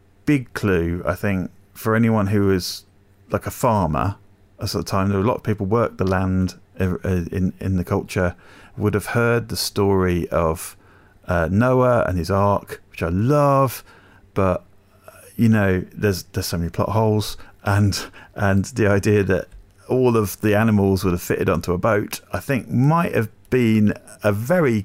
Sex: male